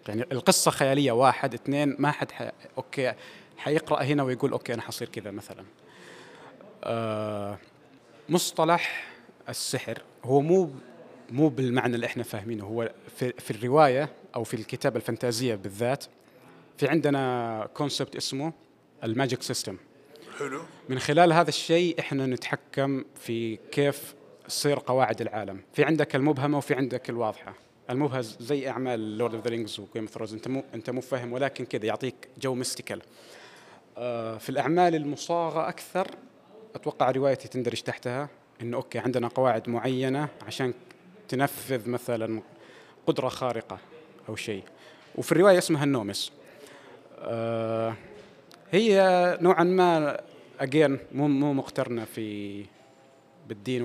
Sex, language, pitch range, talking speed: male, Arabic, 115-145 Hz, 125 wpm